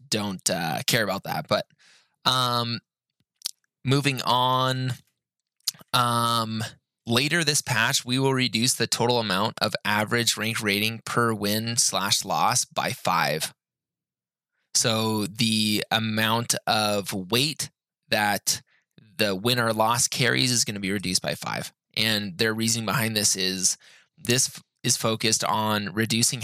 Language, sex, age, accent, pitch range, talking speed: English, male, 20-39, American, 105-125 Hz, 130 wpm